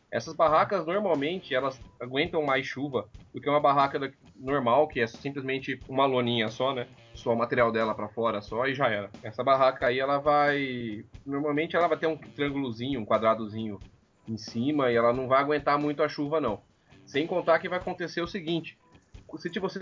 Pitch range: 115-155 Hz